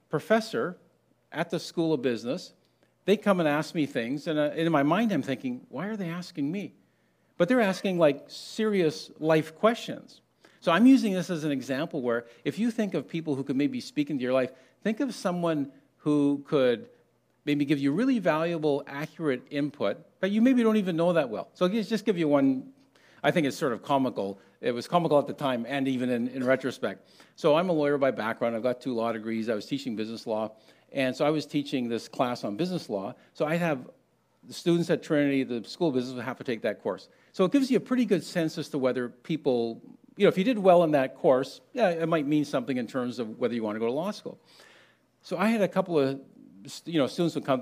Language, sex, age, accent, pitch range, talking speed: English, male, 50-69, American, 130-180 Hz, 230 wpm